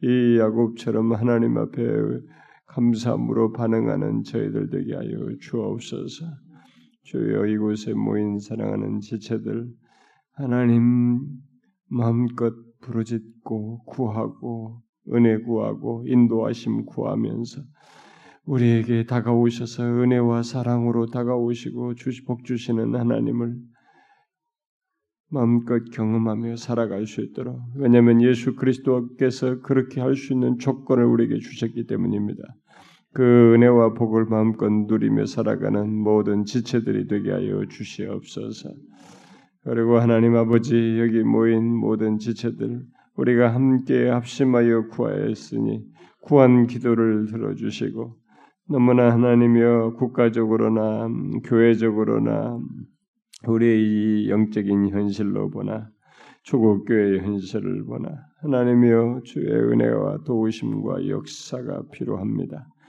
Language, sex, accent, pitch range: Korean, male, native, 110-125 Hz